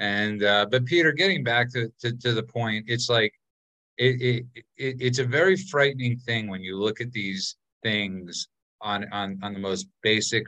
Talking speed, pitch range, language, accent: 190 wpm, 100-120 Hz, English, American